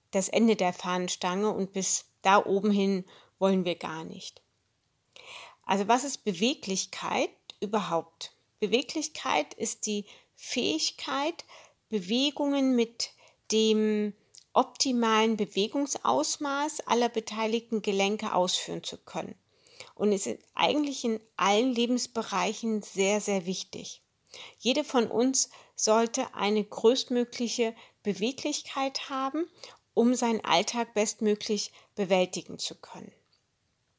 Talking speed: 100 wpm